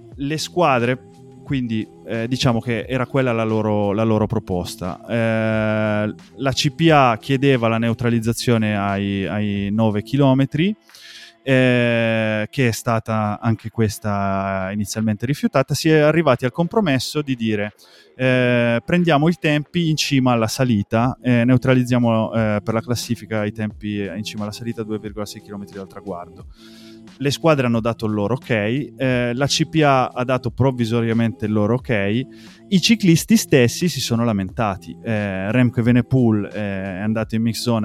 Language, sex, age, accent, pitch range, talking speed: Italian, male, 20-39, native, 105-130 Hz, 150 wpm